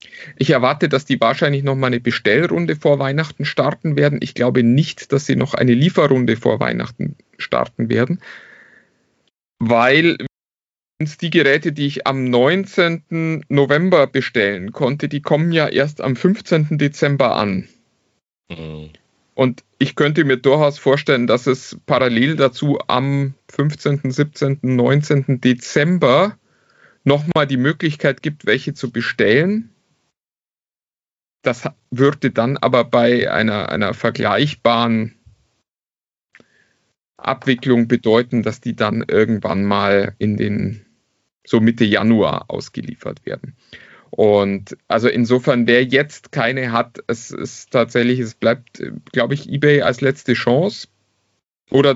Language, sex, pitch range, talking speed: German, male, 120-145 Hz, 120 wpm